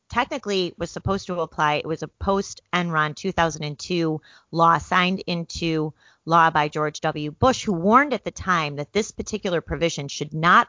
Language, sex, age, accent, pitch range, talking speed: English, female, 30-49, American, 155-200 Hz, 170 wpm